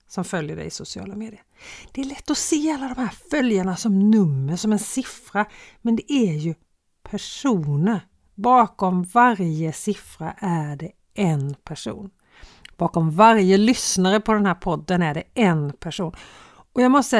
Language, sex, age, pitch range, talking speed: Swedish, female, 50-69, 180-260 Hz, 165 wpm